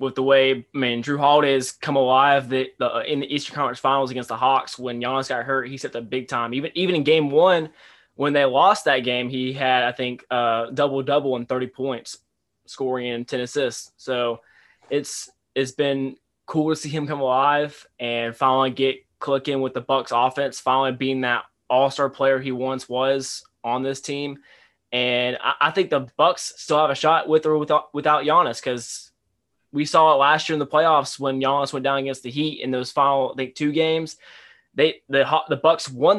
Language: English